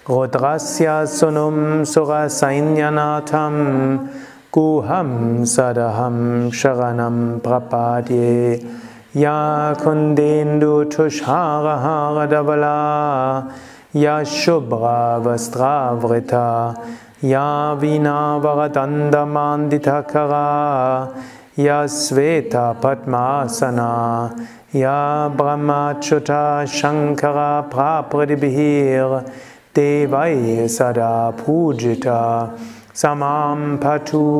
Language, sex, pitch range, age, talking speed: German, male, 120-145 Hz, 30-49, 50 wpm